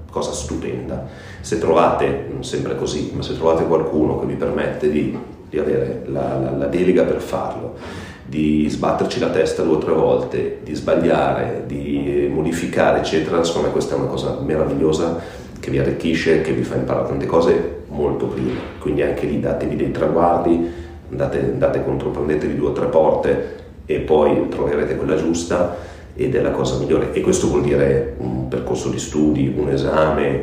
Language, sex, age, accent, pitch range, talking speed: Italian, male, 40-59, native, 70-80 Hz, 170 wpm